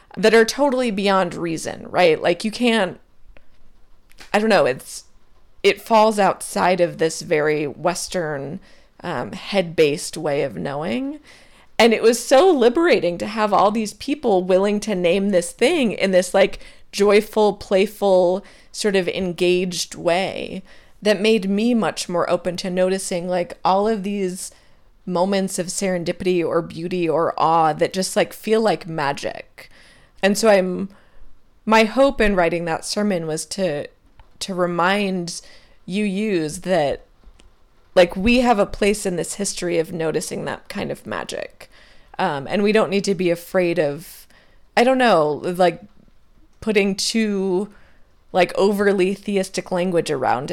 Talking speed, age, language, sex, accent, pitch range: 150 wpm, 30-49, English, female, American, 170-205 Hz